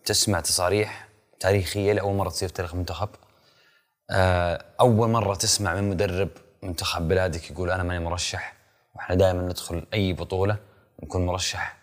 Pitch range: 90-125 Hz